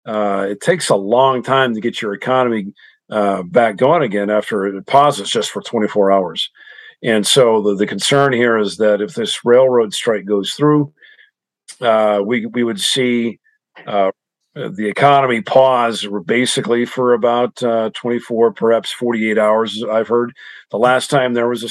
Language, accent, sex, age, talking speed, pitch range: English, American, male, 50-69, 165 wpm, 105-125 Hz